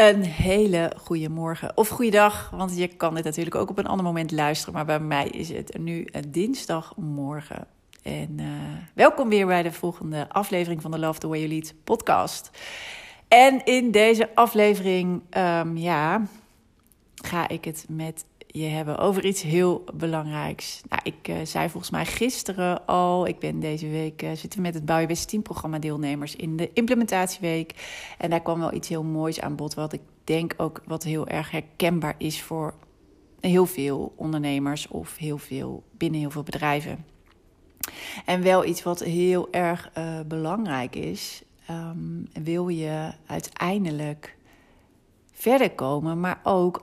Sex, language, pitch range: female, Dutch, 155-185 Hz